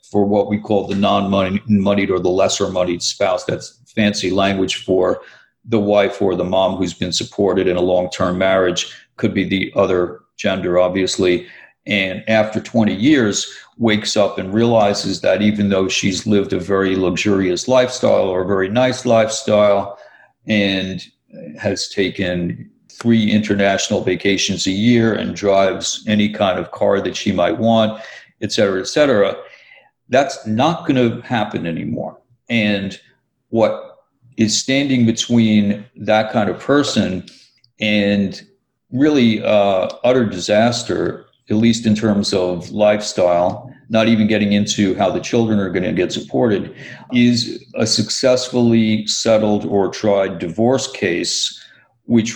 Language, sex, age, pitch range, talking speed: English, male, 50-69, 95-115 Hz, 140 wpm